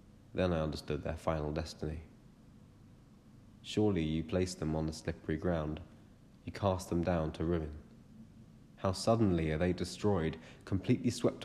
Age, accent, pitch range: 30-49, British, 80-100 Hz